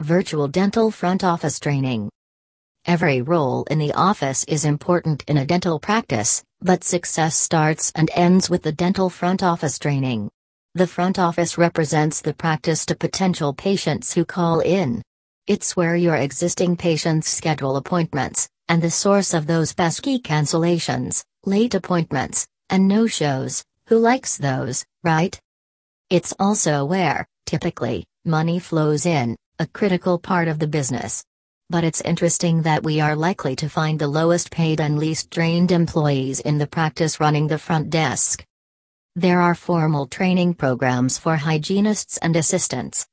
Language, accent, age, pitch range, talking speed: English, American, 40-59, 145-175 Hz, 145 wpm